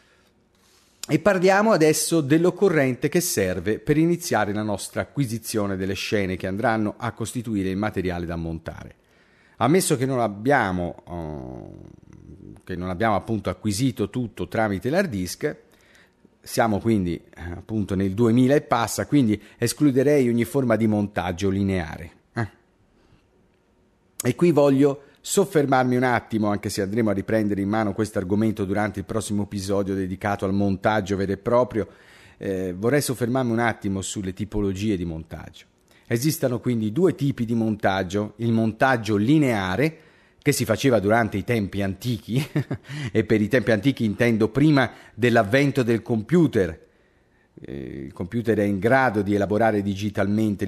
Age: 40-59